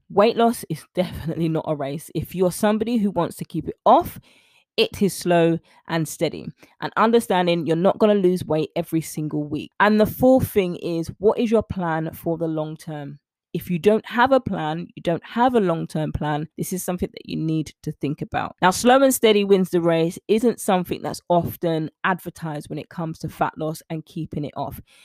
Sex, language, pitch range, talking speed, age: female, English, 160-195 Hz, 210 wpm, 20-39